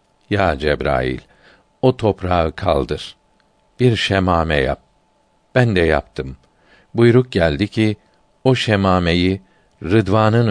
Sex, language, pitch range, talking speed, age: male, Turkish, 80-110 Hz, 95 wpm, 50-69